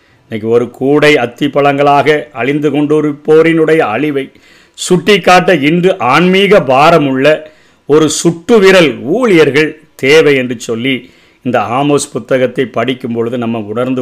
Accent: native